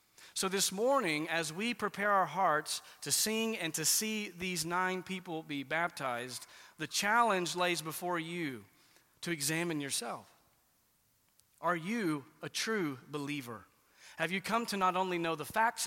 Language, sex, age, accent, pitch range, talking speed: English, male, 40-59, American, 135-175 Hz, 150 wpm